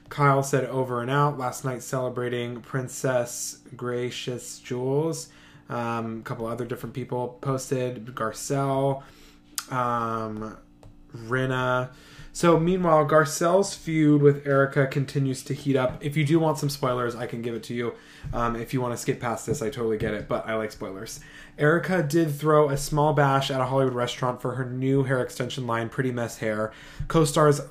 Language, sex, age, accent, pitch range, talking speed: English, male, 20-39, American, 120-145 Hz, 170 wpm